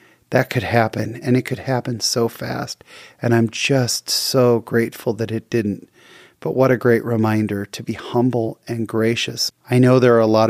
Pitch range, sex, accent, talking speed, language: 105-120 Hz, male, American, 190 wpm, English